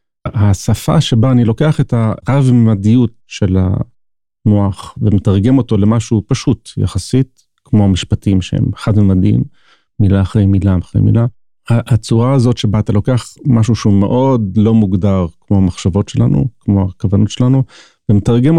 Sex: male